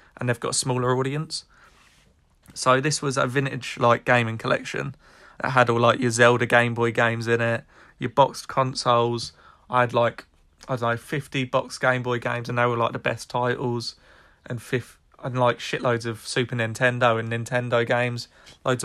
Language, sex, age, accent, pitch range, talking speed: English, male, 20-39, British, 120-135 Hz, 185 wpm